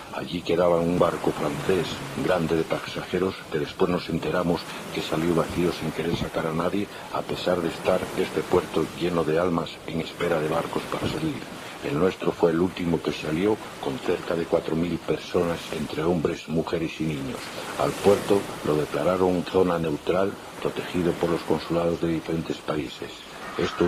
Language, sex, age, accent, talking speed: Spanish, male, 60-79, Spanish, 165 wpm